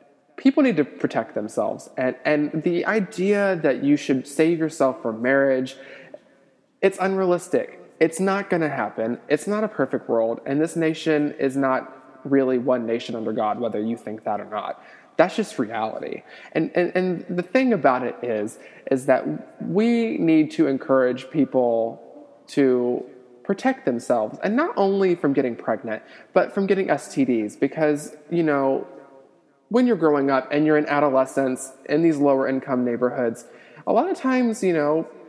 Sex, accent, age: male, American, 20-39